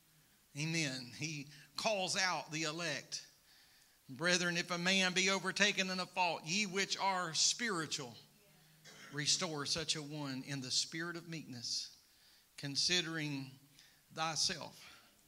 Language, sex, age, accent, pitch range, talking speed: English, male, 50-69, American, 150-185 Hz, 120 wpm